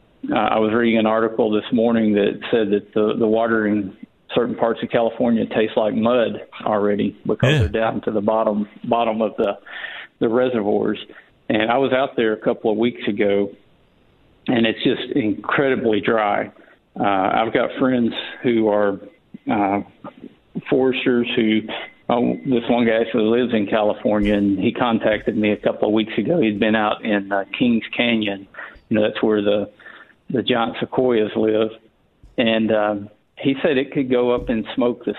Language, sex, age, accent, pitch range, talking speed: English, male, 50-69, American, 105-120 Hz, 175 wpm